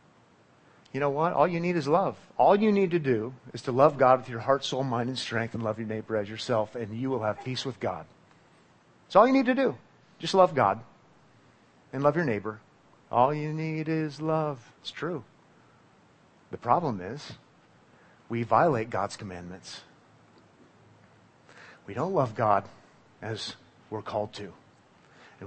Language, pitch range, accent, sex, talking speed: English, 110-140 Hz, American, male, 170 wpm